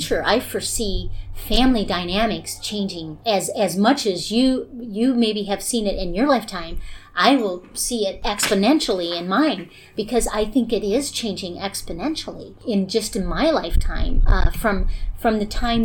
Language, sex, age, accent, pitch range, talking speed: English, female, 40-59, American, 190-240 Hz, 160 wpm